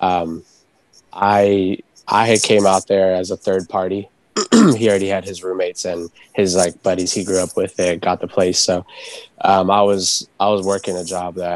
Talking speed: 190 wpm